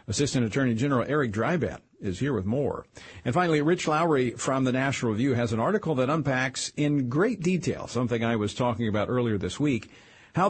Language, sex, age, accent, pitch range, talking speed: English, male, 50-69, American, 105-145 Hz, 195 wpm